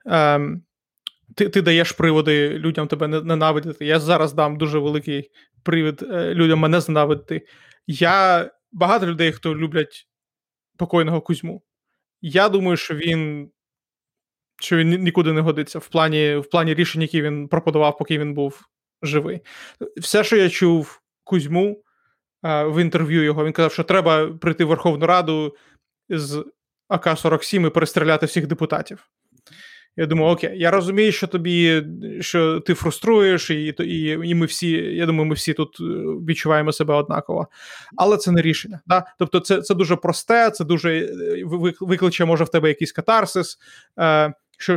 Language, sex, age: Ukrainian, male, 30-49